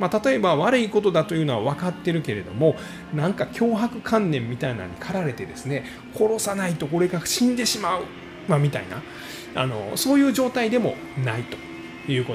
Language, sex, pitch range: Japanese, male, 120-190 Hz